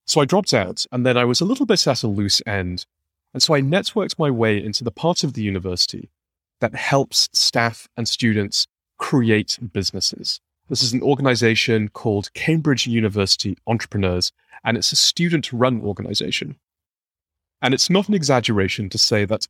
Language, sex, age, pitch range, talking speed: English, male, 30-49, 100-130 Hz, 170 wpm